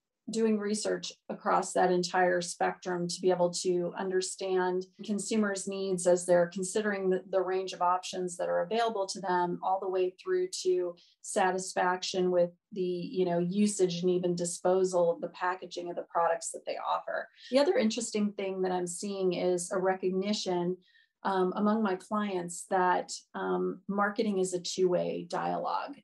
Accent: American